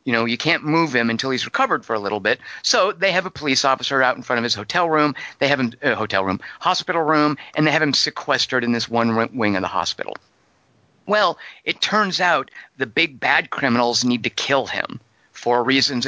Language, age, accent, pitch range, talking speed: English, 50-69, American, 120-150 Hz, 225 wpm